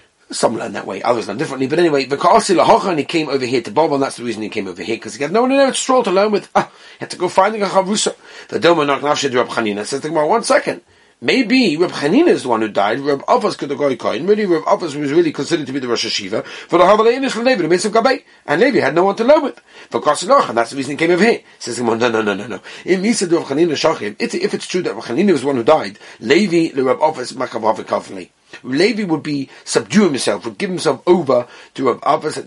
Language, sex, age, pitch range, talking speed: English, male, 30-49, 135-200 Hz, 250 wpm